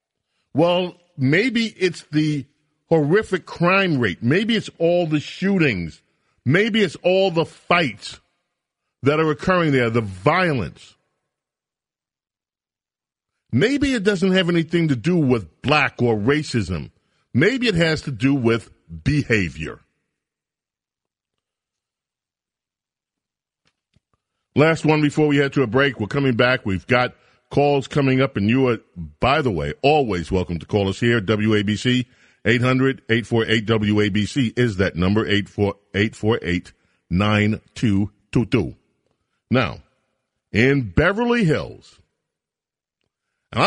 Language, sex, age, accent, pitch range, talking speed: English, male, 40-59, American, 105-155 Hz, 110 wpm